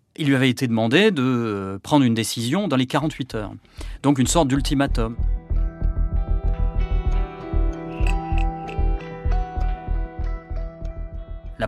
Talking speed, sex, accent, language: 90 wpm, male, French, French